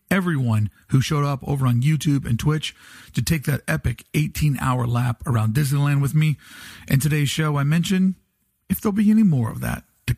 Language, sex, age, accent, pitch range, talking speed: English, male, 40-59, American, 155-200 Hz, 190 wpm